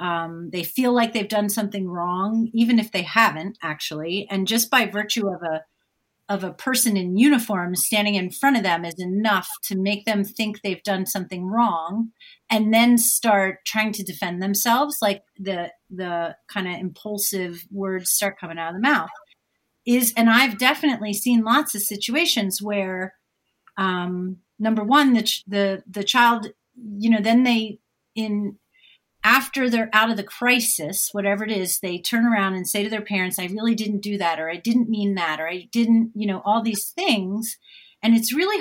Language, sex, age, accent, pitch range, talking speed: English, female, 40-59, American, 190-235 Hz, 185 wpm